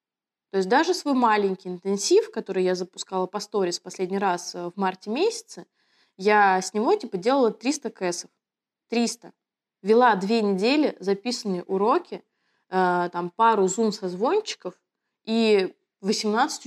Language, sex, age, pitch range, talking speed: Russian, female, 20-39, 185-245 Hz, 125 wpm